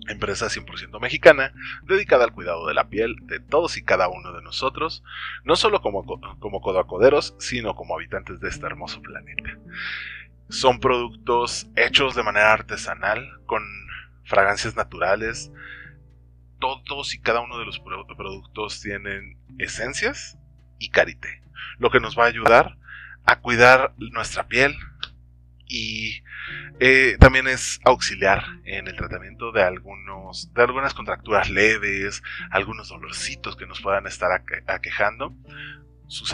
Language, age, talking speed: Spanish, 30-49, 130 wpm